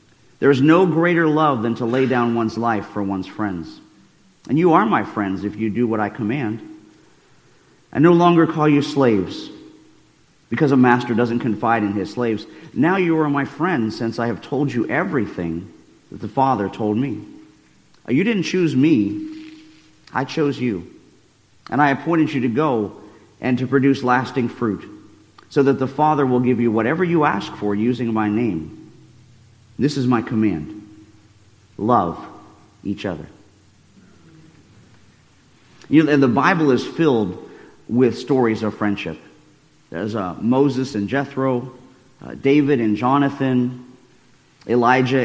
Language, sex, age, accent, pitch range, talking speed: English, male, 50-69, American, 110-145 Hz, 150 wpm